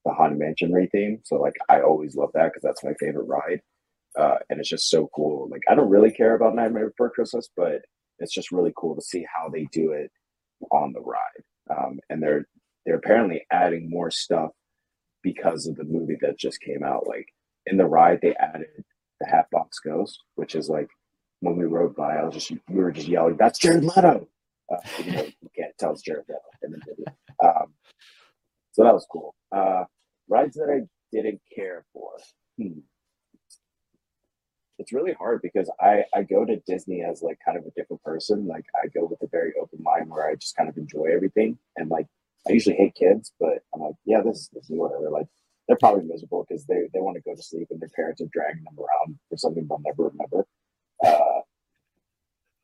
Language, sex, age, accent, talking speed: English, male, 30-49, American, 205 wpm